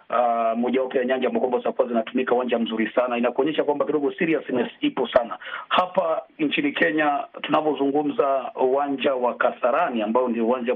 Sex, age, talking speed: male, 40-59, 150 wpm